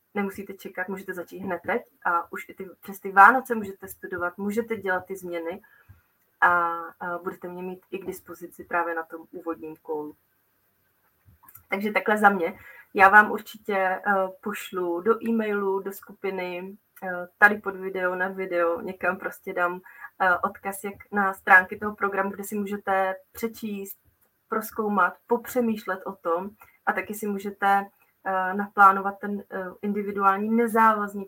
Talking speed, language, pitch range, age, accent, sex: 140 wpm, Czech, 185-210 Hz, 30-49, native, female